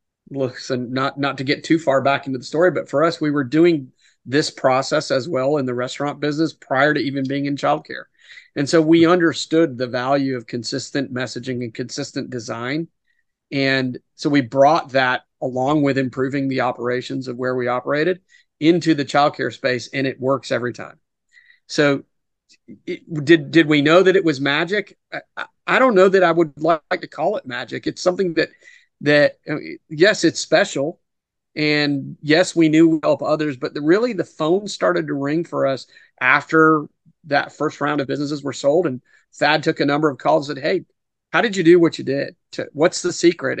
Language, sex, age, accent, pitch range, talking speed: English, male, 40-59, American, 135-170 Hz, 195 wpm